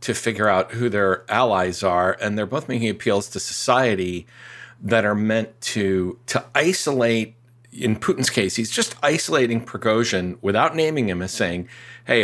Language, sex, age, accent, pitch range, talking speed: English, male, 50-69, American, 105-125 Hz, 160 wpm